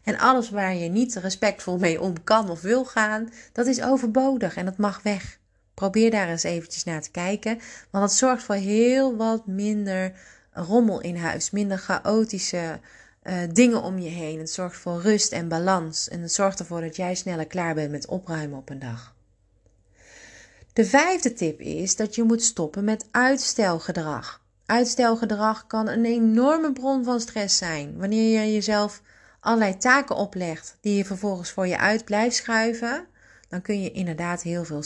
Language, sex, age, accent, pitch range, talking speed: Dutch, female, 30-49, Dutch, 155-220 Hz, 175 wpm